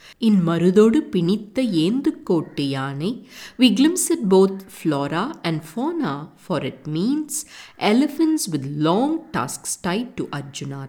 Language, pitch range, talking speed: English, 150-235 Hz, 120 wpm